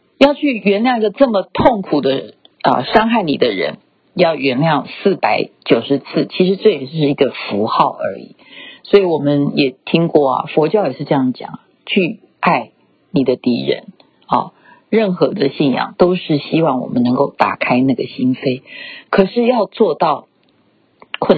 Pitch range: 145-215 Hz